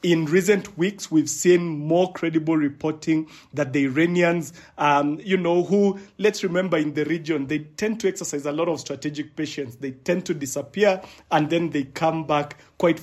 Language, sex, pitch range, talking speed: English, male, 145-170 Hz, 180 wpm